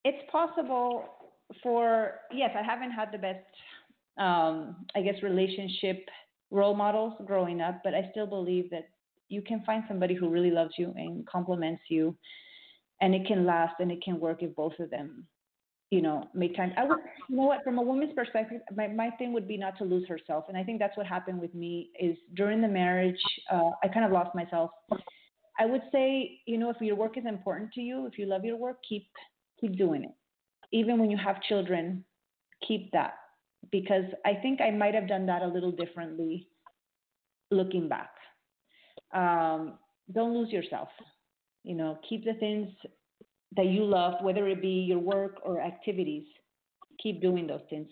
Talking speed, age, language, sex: 185 wpm, 30-49, English, female